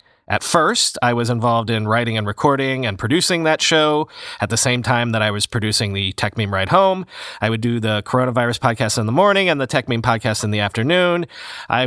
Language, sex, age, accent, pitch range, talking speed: English, male, 30-49, American, 115-165 Hz, 220 wpm